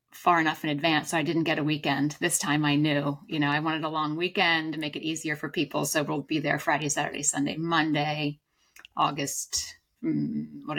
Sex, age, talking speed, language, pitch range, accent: female, 30-49, 205 wpm, English, 155-185 Hz, American